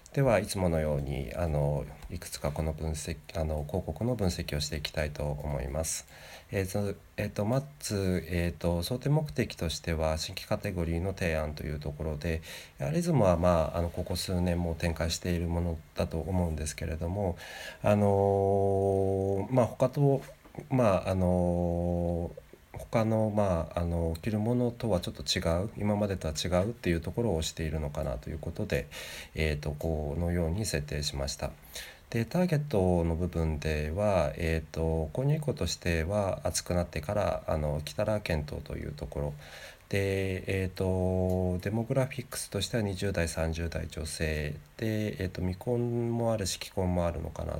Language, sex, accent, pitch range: Japanese, male, native, 80-100 Hz